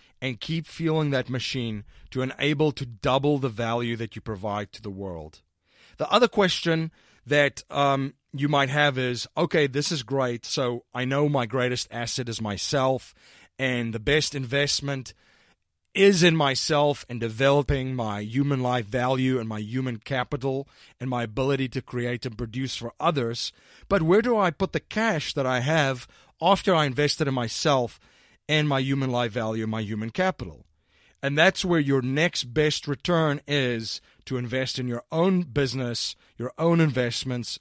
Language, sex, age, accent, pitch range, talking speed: English, male, 30-49, American, 115-145 Hz, 165 wpm